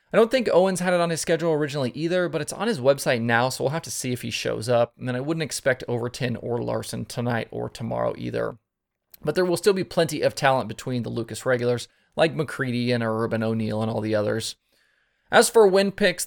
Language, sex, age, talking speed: English, male, 20-39, 230 wpm